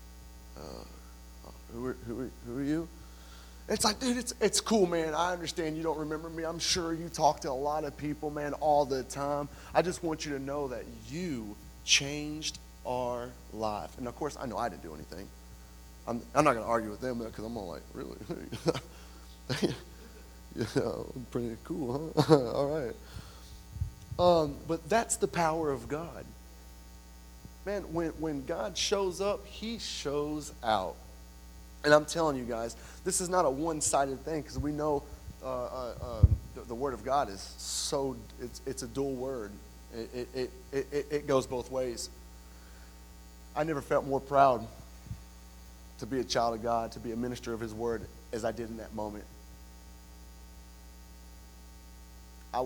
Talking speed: 175 wpm